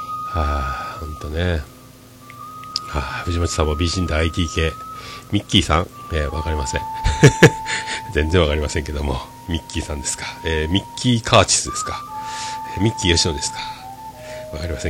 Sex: male